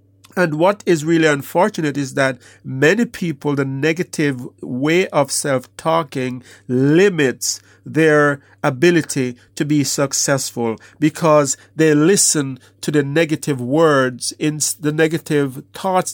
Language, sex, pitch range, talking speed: English, male, 135-160 Hz, 110 wpm